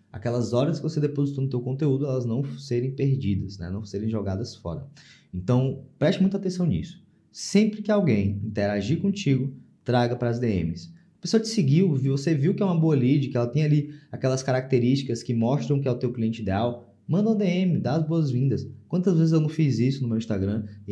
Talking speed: 205 wpm